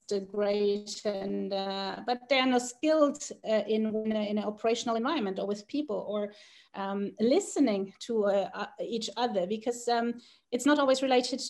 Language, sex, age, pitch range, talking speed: English, female, 30-49, 205-250 Hz, 145 wpm